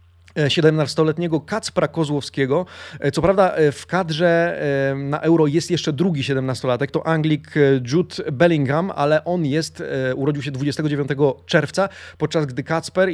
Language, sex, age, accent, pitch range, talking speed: Polish, male, 30-49, native, 140-170 Hz, 125 wpm